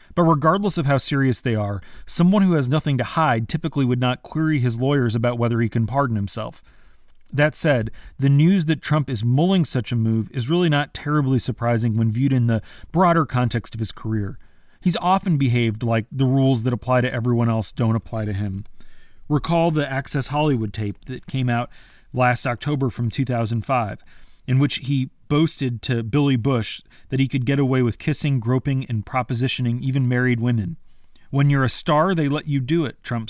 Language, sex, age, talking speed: English, male, 30-49, 195 wpm